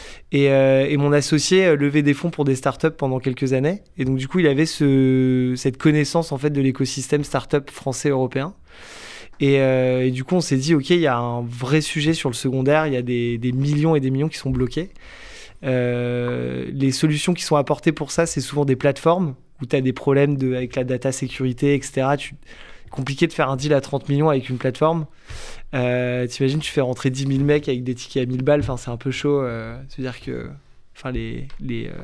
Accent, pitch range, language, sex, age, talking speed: French, 130-150 Hz, French, male, 20-39, 225 wpm